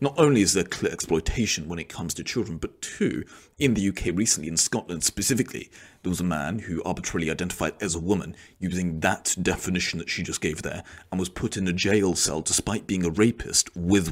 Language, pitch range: English, 85-115 Hz